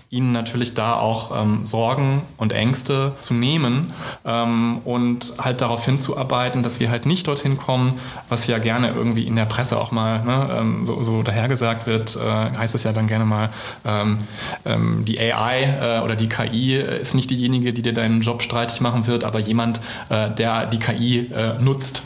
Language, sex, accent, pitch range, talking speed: German, male, German, 115-130 Hz, 180 wpm